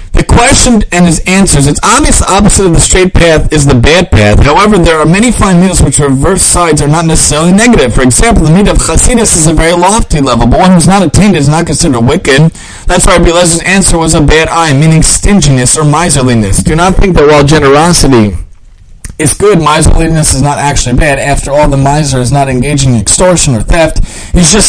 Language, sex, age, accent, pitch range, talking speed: English, male, 30-49, American, 135-175 Hz, 215 wpm